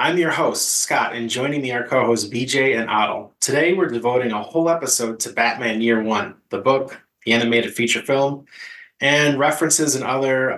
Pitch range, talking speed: 120-145 Hz, 180 wpm